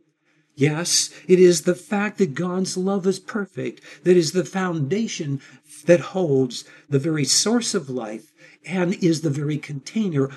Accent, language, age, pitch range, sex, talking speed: American, English, 60-79, 135-185 Hz, male, 150 wpm